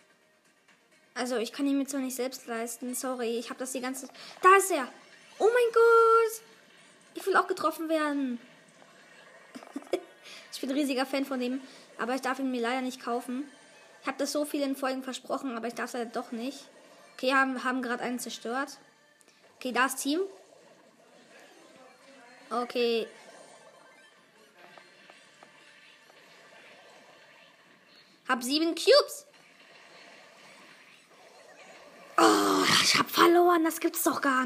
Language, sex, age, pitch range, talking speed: German, female, 20-39, 240-290 Hz, 140 wpm